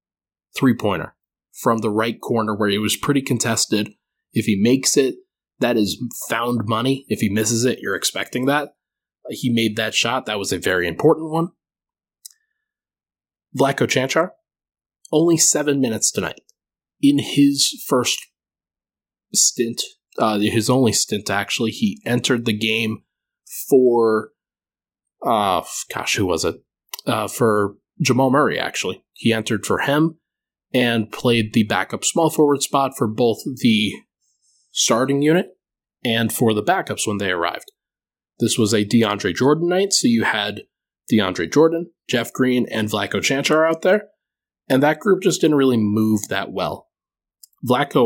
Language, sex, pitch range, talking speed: English, male, 110-150 Hz, 145 wpm